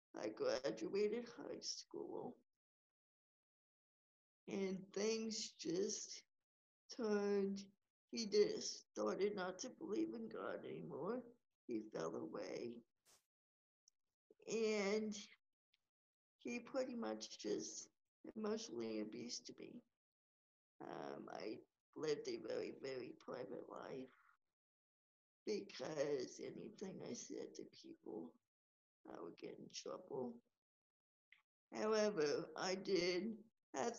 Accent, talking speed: American, 90 wpm